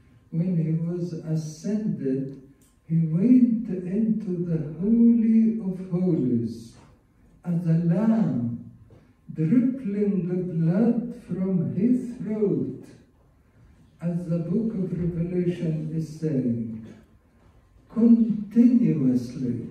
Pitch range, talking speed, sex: 135-185 Hz, 85 wpm, male